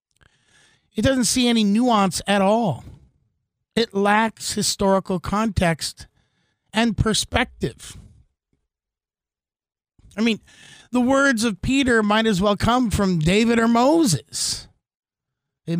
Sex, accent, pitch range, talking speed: male, American, 145-215 Hz, 105 wpm